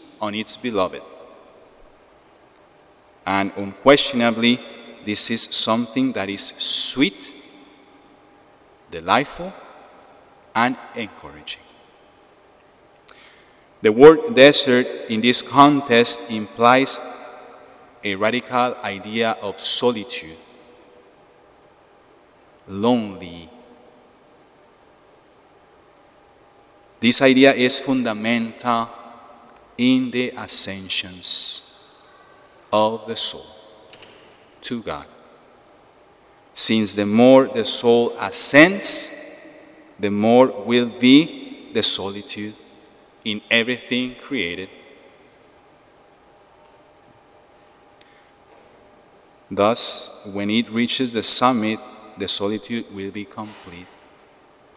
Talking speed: 70 wpm